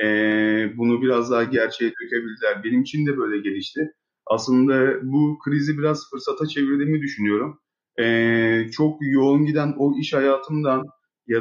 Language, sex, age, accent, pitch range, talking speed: Turkish, male, 30-49, native, 115-145 Hz, 125 wpm